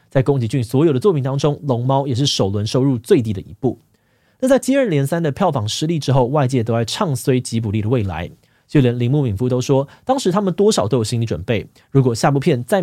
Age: 20-39